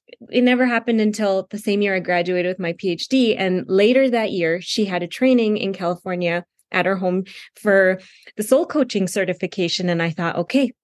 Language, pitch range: English, 185-240 Hz